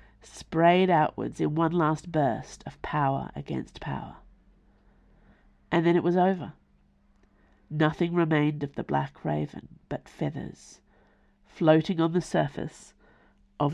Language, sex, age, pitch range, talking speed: English, female, 50-69, 140-175 Hz, 120 wpm